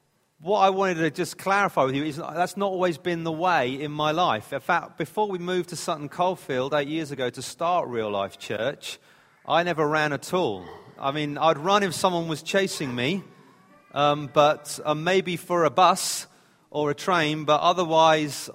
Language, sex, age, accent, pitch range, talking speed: English, male, 40-59, British, 140-175 Hz, 195 wpm